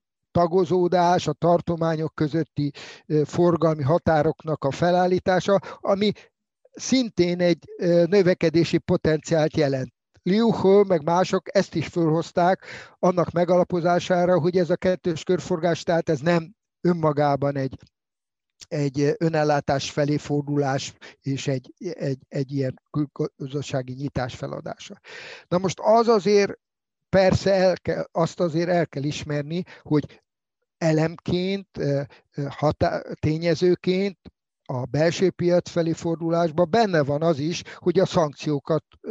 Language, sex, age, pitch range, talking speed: Hungarian, male, 50-69, 150-180 Hz, 105 wpm